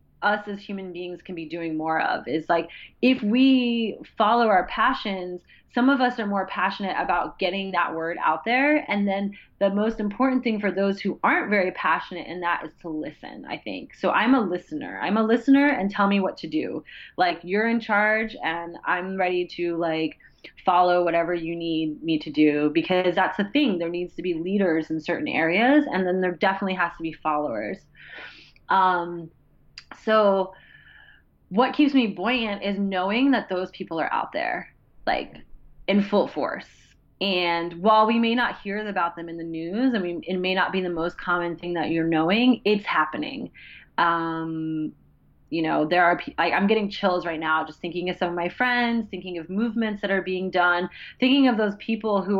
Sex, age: female, 20-39